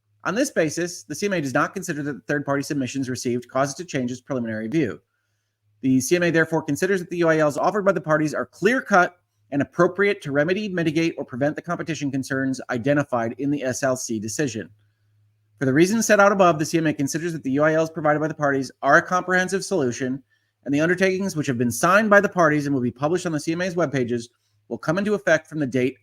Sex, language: male, English